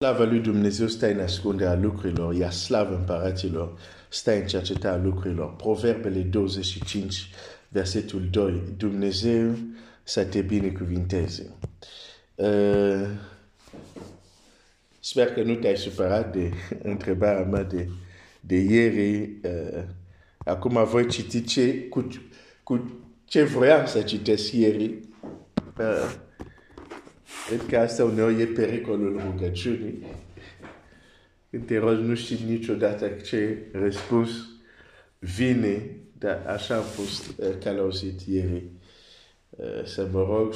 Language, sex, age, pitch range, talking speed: Romanian, male, 50-69, 95-115 Hz, 85 wpm